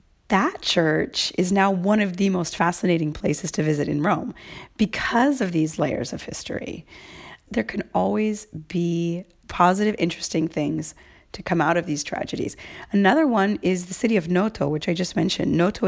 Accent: American